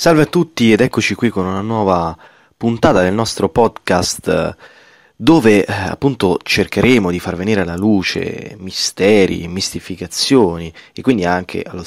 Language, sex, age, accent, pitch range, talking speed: Italian, male, 30-49, native, 90-105 Hz, 145 wpm